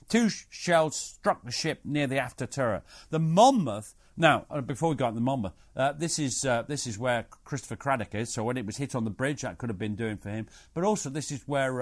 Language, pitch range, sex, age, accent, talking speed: English, 110-155 Hz, male, 50-69, British, 250 wpm